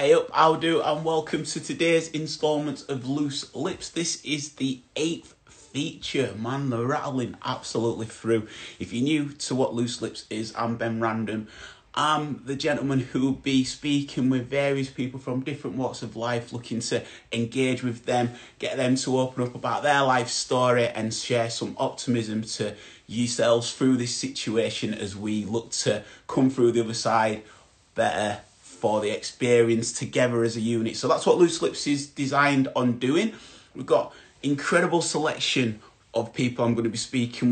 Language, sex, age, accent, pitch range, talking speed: English, male, 30-49, British, 115-145 Hz, 170 wpm